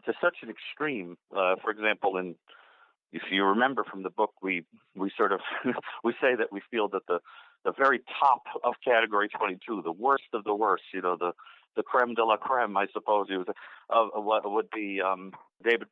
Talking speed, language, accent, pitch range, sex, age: 205 wpm, English, American, 100-135 Hz, male, 50-69